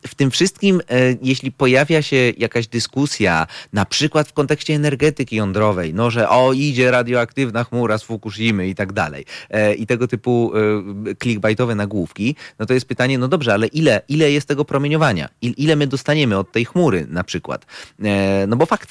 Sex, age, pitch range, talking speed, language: male, 30-49, 105-140 Hz, 185 wpm, Polish